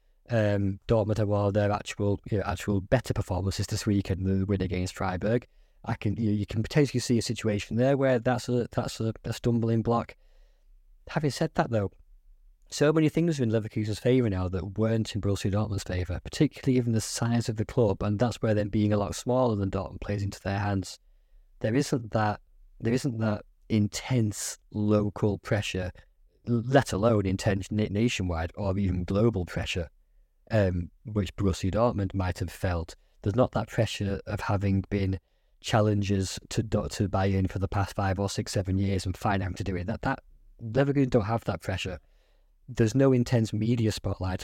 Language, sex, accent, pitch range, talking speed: English, male, British, 95-115 Hz, 185 wpm